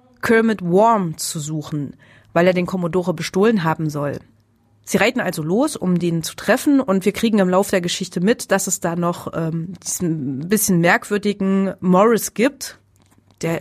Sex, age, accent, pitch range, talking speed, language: female, 30-49, German, 170-220 Hz, 170 wpm, German